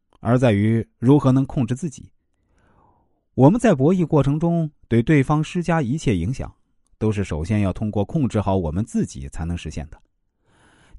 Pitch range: 90-145 Hz